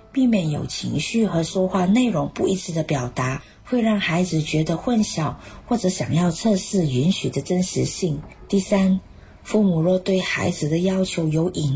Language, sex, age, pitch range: Chinese, female, 50-69, 155-200 Hz